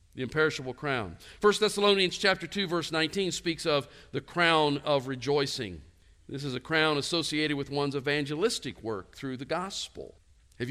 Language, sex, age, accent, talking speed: English, male, 50-69, American, 155 wpm